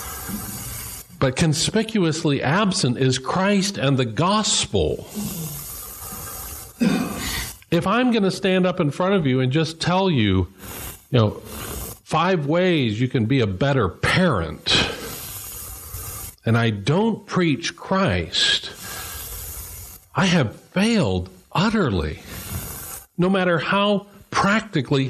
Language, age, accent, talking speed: English, 50-69, American, 110 wpm